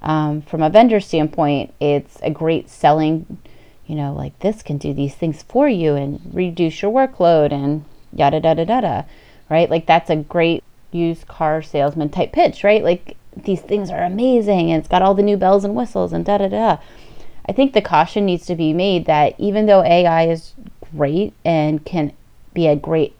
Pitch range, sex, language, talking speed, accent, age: 155-180 Hz, female, English, 200 wpm, American, 30-49